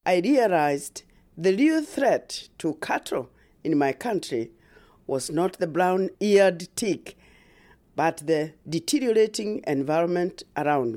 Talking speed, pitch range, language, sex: 110 wpm, 135-220 Hz, English, female